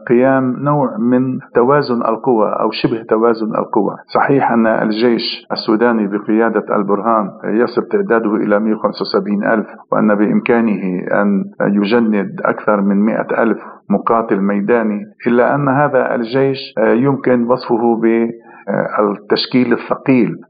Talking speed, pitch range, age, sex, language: 105 wpm, 110-125 Hz, 50-69, male, Arabic